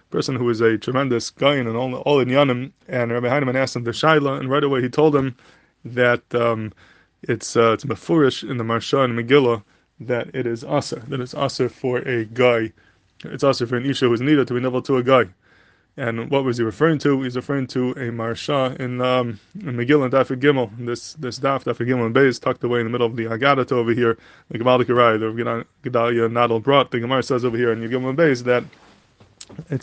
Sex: male